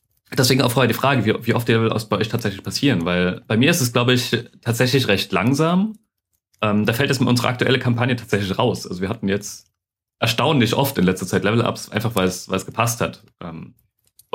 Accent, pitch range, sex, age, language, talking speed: German, 105-125 Hz, male, 30-49, German, 205 wpm